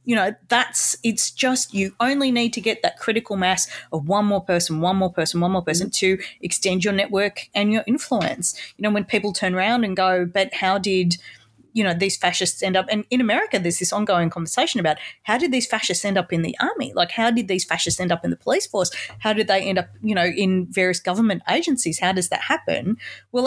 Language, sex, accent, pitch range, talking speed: English, female, Australian, 185-235 Hz, 235 wpm